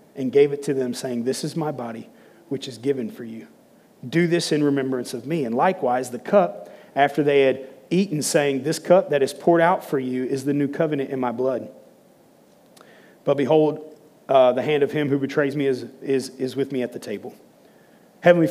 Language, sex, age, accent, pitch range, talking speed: English, male, 30-49, American, 135-160 Hz, 210 wpm